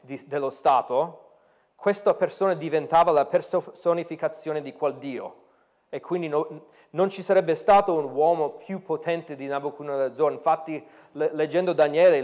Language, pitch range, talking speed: Italian, 150-195 Hz, 130 wpm